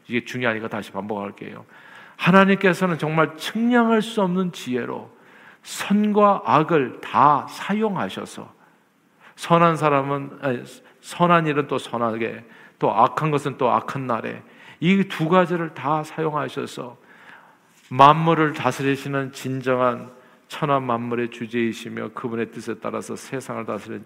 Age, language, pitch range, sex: 50-69, Korean, 120-165 Hz, male